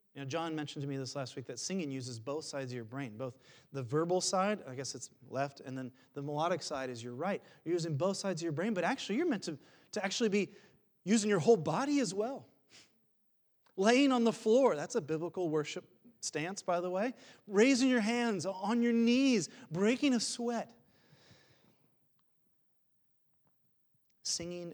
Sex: male